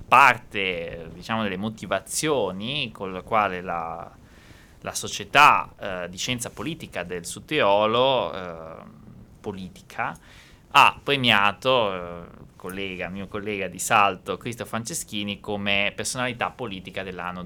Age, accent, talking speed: 20-39, native, 110 wpm